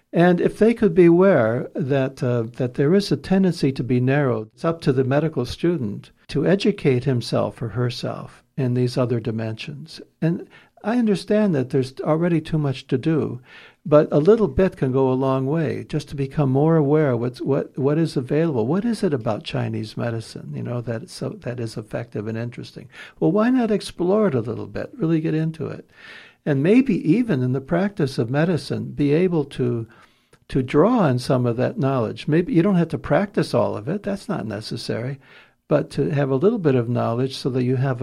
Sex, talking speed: male, 205 wpm